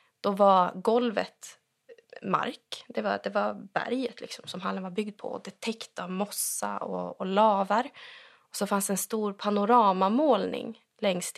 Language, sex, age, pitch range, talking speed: Swedish, female, 20-39, 195-255 Hz, 155 wpm